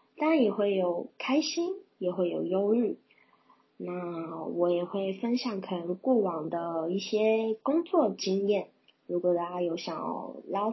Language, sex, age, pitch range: Chinese, female, 20-39, 175-220 Hz